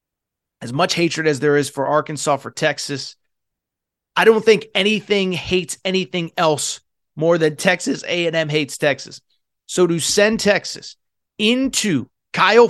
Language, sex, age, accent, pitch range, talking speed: English, male, 30-49, American, 160-210 Hz, 135 wpm